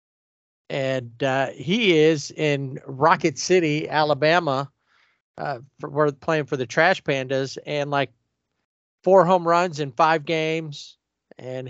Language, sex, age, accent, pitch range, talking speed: English, male, 40-59, American, 130-165 Hz, 130 wpm